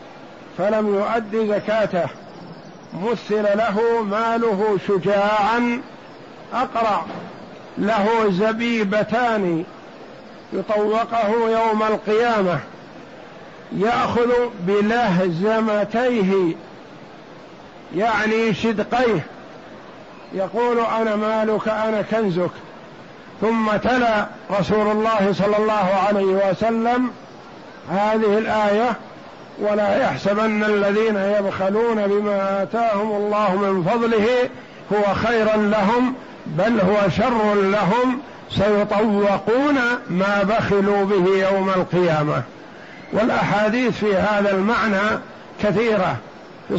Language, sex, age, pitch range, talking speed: Arabic, male, 50-69, 200-225 Hz, 75 wpm